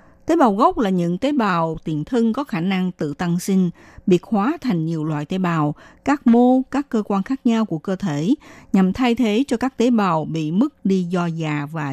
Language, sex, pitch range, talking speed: Vietnamese, female, 170-235 Hz, 225 wpm